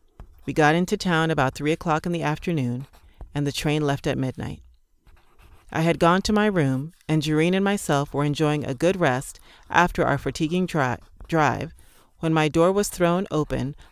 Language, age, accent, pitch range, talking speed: English, 40-59, American, 130-165 Hz, 175 wpm